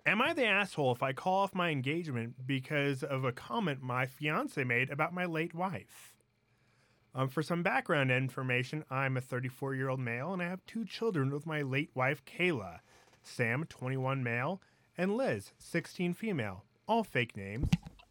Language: English